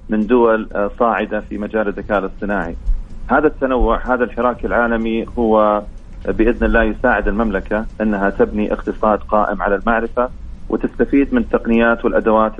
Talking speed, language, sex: 130 wpm, English, male